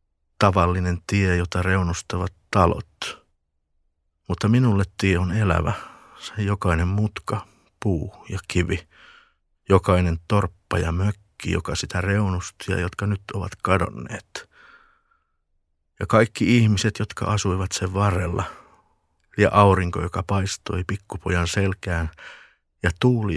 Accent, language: native, Finnish